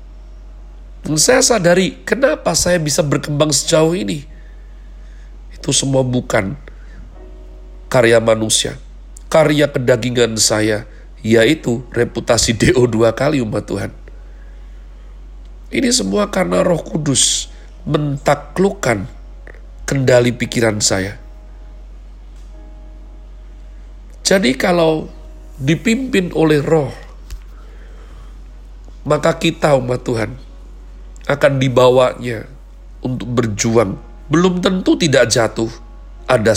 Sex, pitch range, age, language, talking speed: male, 105-145 Hz, 40-59, Indonesian, 85 wpm